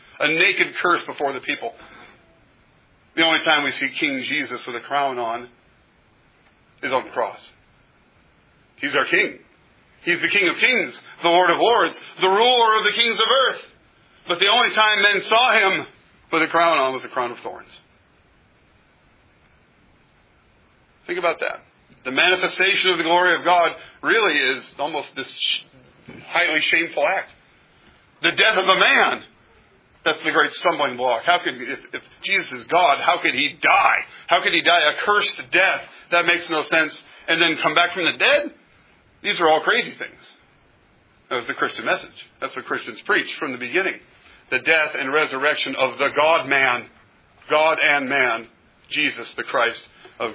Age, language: 40-59, English